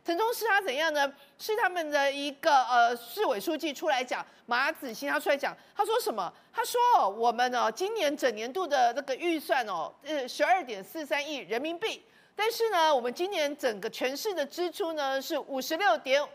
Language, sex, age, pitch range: Chinese, female, 40-59, 280-385 Hz